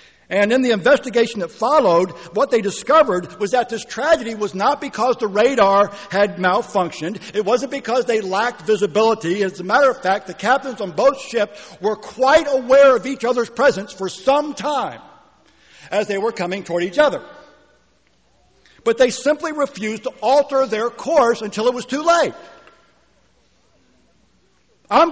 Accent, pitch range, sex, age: American, 170-250 Hz, male, 60-79